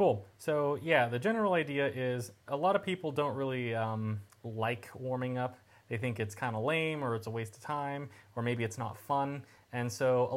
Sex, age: male, 20-39